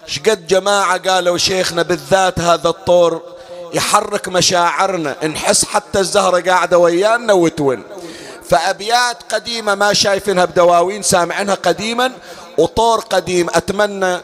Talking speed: 105 wpm